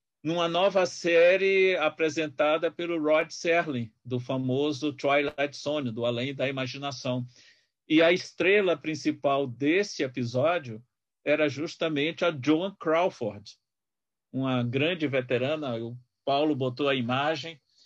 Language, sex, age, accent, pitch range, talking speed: Portuguese, male, 50-69, Brazilian, 130-165 Hz, 115 wpm